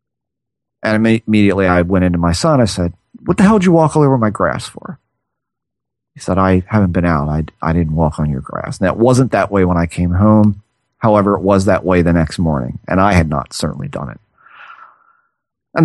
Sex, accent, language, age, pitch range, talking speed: male, American, English, 40-59, 95-125 Hz, 220 wpm